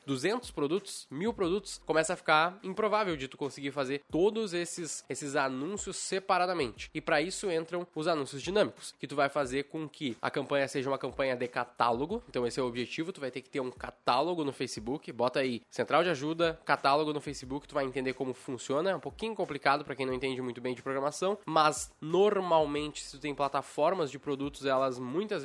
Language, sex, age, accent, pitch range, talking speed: Portuguese, male, 10-29, Brazilian, 140-185 Hz, 205 wpm